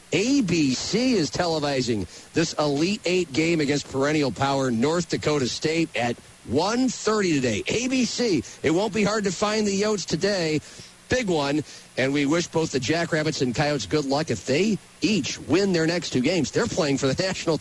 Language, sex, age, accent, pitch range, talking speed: English, male, 50-69, American, 145-195 Hz, 175 wpm